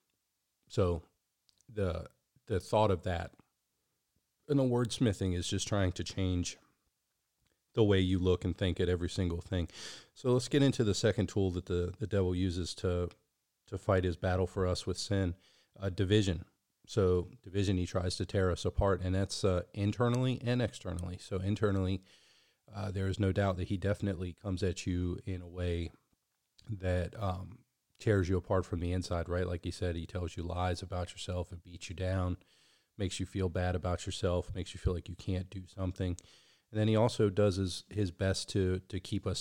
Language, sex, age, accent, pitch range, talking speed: English, male, 40-59, American, 90-100 Hz, 190 wpm